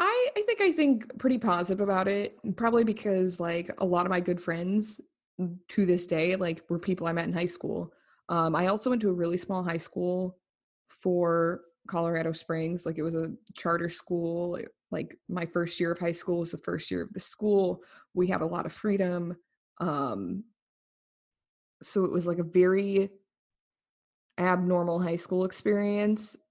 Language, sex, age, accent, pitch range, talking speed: English, female, 20-39, American, 170-200 Hz, 175 wpm